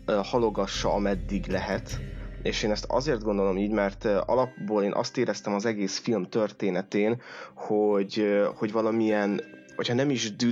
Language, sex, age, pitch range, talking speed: Hungarian, male, 20-39, 100-115 Hz, 145 wpm